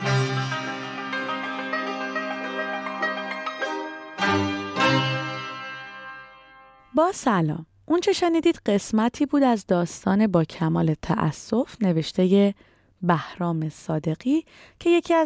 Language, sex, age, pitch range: Persian, female, 30-49, 160-225 Hz